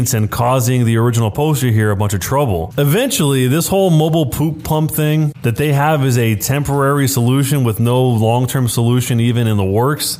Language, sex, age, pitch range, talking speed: English, male, 20-39, 115-150 Hz, 190 wpm